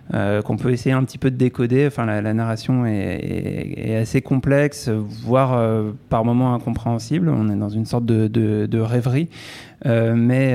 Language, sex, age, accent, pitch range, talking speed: French, male, 30-49, French, 110-130 Hz, 195 wpm